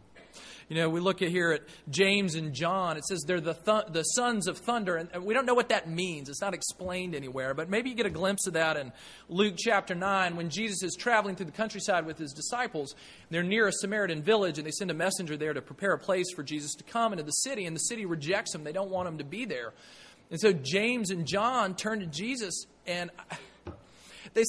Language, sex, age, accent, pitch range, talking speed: English, male, 30-49, American, 145-195 Hz, 235 wpm